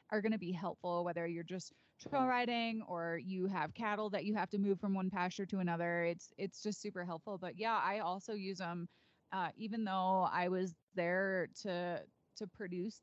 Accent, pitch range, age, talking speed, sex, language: American, 170-210 Hz, 20-39, 205 wpm, female, English